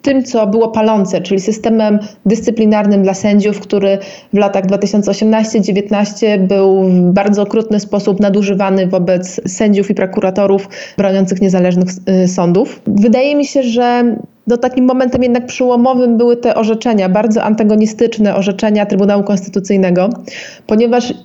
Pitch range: 200-240 Hz